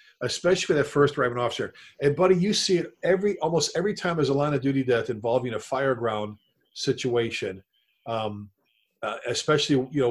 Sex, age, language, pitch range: male, 40-59, English, 125-165 Hz